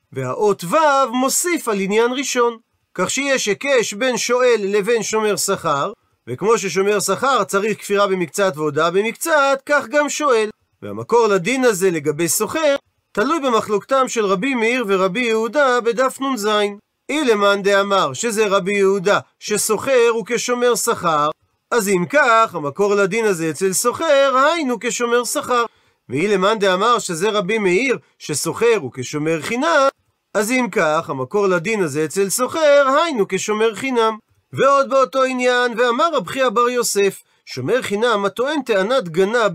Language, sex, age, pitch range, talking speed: Hebrew, male, 40-59, 195-255 Hz, 145 wpm